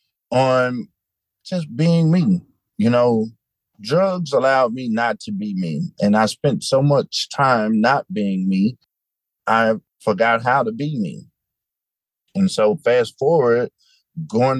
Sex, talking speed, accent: male, 135 wpm, American